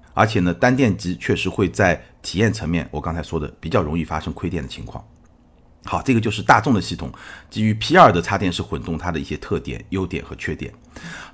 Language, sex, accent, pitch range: Chinese, male, native, 85-120 Hz